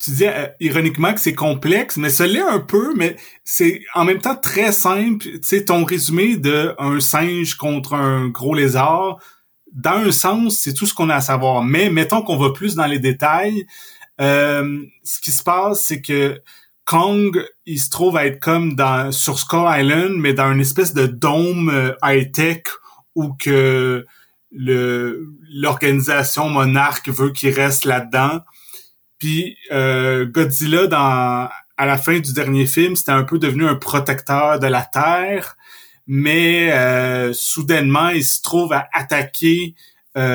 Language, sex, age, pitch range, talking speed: French, male, 30-49, 135-175 Hz, 165 wpm